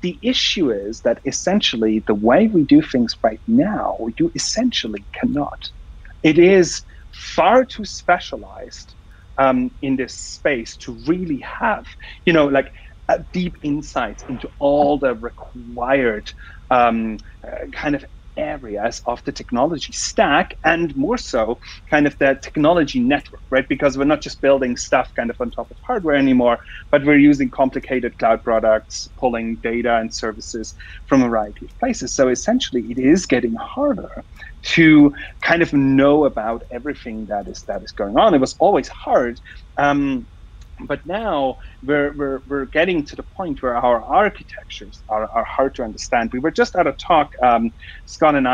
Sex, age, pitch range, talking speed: male, 30-49, 115-160 Hz, 160 wpm